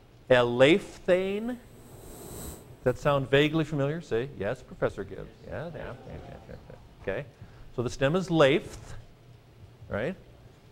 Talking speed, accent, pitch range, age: 105 wpm, American, 105-130 Hz, 50-69